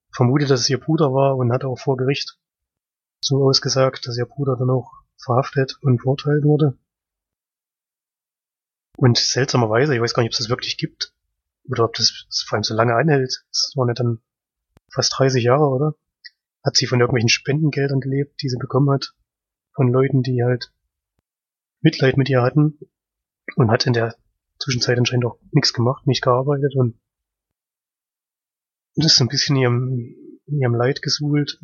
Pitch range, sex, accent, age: 120-140 Hz, male, German, 30-49